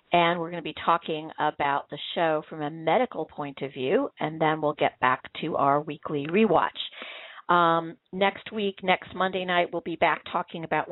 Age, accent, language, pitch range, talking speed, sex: 50-69, American, English, 150-185 Hz, 190 wpm, female